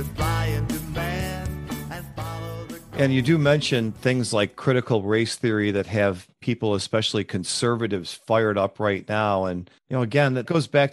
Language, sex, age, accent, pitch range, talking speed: English, male, 40-59, American, 110-145 Hz, 135 wpm